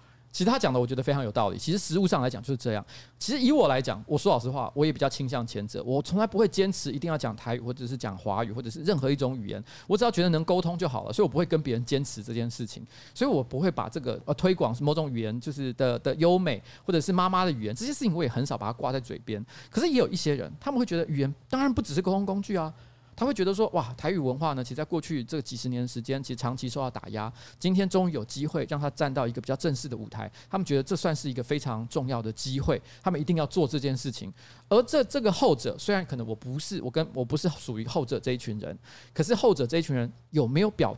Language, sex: Chinese, male